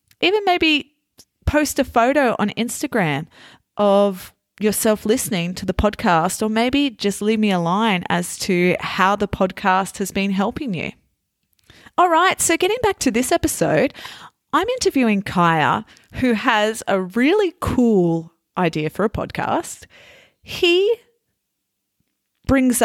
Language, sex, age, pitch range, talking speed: English, female, 30-49, 175-245 Hz, 135 wpm